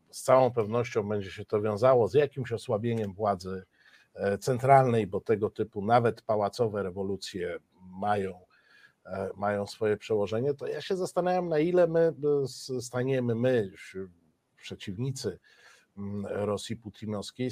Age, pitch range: 50-69, 110-140 Hz